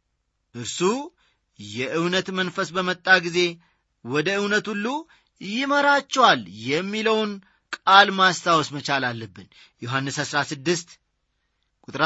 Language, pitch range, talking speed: Amharic, 140-205 Hz, 85 wpm